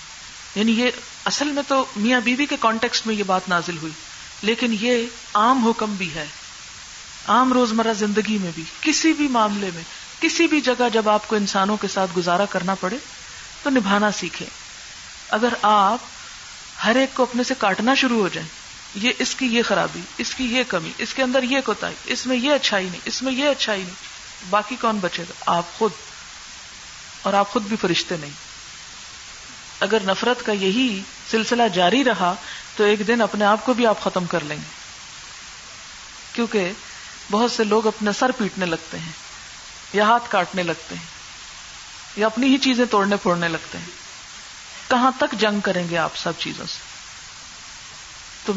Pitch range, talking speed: 190-245 Hz, 175 wpm